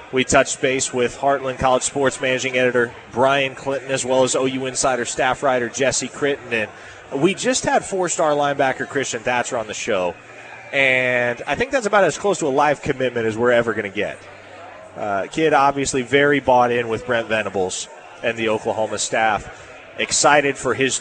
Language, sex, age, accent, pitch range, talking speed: English, male, 30-49, American, 125-150 Hz, 180 wpm